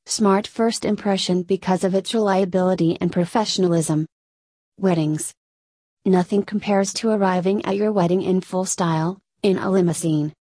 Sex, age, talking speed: female, 30-49, 130 wpm